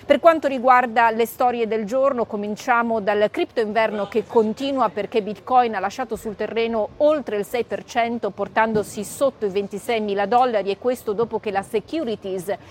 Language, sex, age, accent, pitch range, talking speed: Italian, female, 30-49, native, 210-250 Hz, 160 wpm